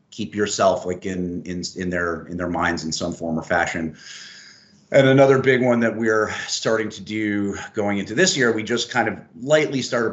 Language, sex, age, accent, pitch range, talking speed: English, male, 30-49, American, 90-110 Hz, 200 wpm